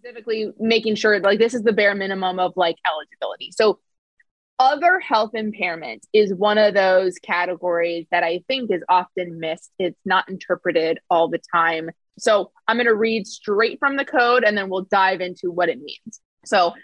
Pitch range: 185-235 Hz